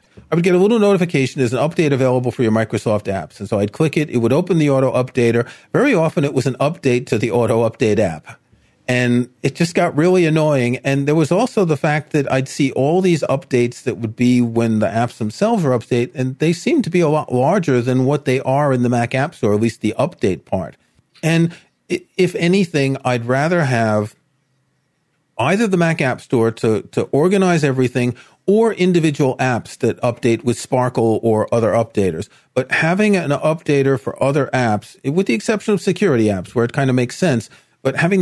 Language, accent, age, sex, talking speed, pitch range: English, American, 40-59, male, 205 wpm, 120-165 Hz